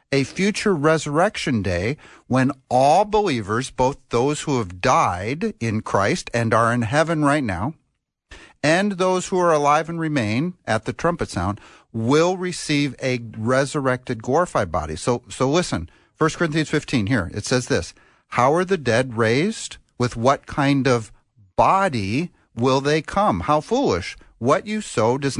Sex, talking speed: male, 155 wpm